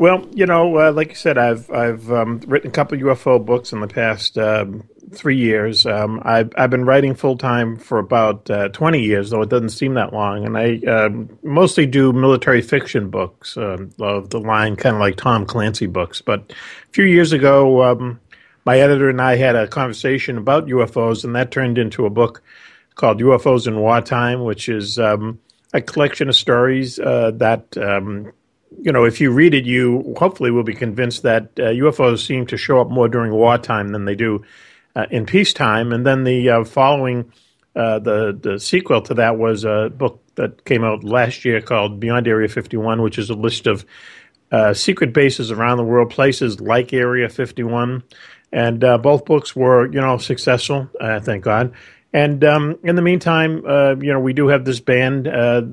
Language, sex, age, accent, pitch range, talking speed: English, male, 50-69, American, 115-135 Hz, 195 wpm